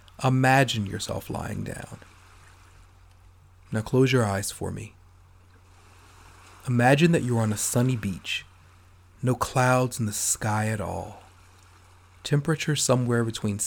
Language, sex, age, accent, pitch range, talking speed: English, male, 40-59, American, 90-125 Hz, 120 wpm